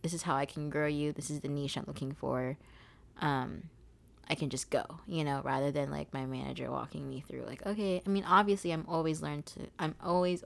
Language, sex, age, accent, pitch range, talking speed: English, female, 20-39, American, 140-190 Hz, 230 wpm